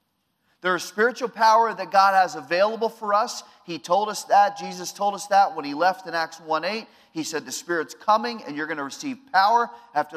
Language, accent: English, American